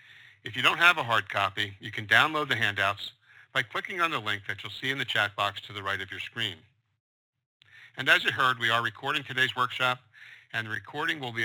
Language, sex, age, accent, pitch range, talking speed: English, male, 50-69, American, 105-125 Hz, 230 wpm